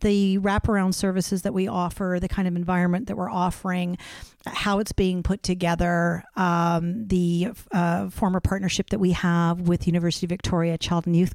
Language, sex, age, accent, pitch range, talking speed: English, female, 50-69, American, 175-200 Hz, 175 wpm